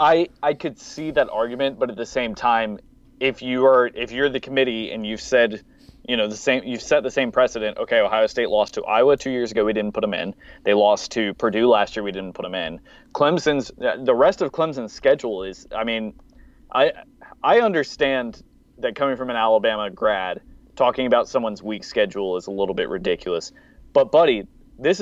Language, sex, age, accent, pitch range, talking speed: English, male, 30-49, American, 115-160 Hz, 205 wpm